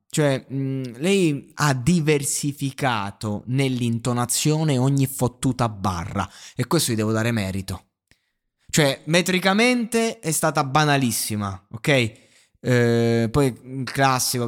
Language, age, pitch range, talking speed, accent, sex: Italian, 20-39, 120-170 Hz, 105 wpm, native, male